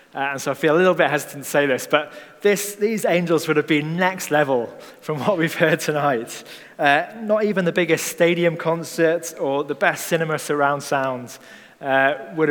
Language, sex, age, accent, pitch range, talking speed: English, male, 20-39, British, 135-170 Hz, 190 wpm